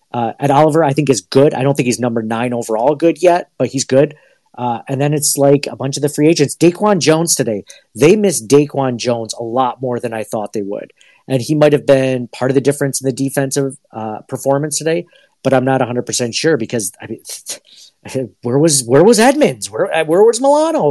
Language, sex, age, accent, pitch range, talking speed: English, male, 40-59, American, 120-145 Hz, 220 wpm